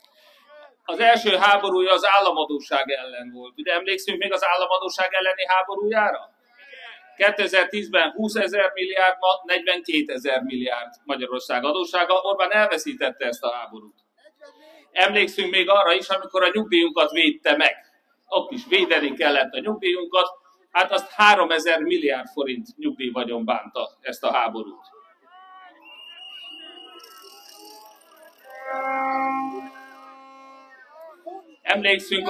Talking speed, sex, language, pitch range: 105 wpm, male, Hungarian, 140-220 Hz